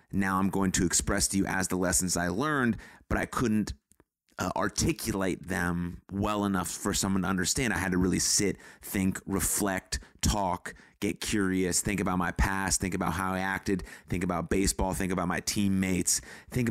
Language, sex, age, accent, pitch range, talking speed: English, male, 30-49, American, 95-110 Hz, 185 wpm